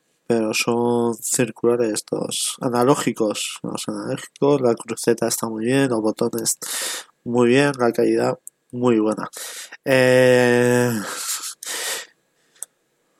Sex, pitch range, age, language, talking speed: male, 115-135 Hz, 20-39, Spanish, 95 wpm